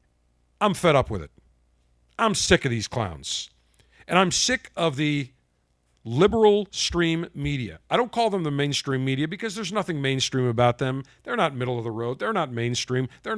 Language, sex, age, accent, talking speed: English, male, 50-69, American, 185 wpm